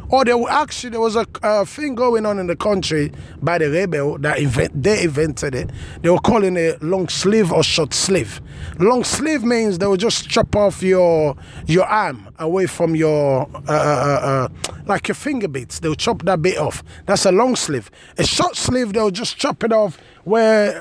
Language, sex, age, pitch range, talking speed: English, male, 20-39, 165-225 Hz, 195 wpm